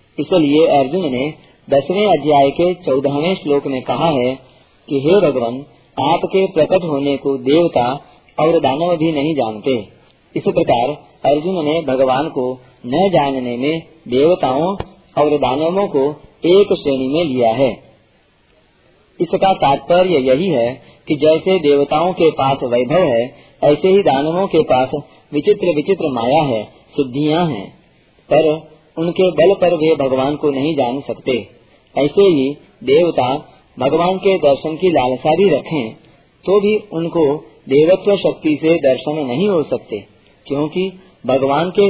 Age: 40-59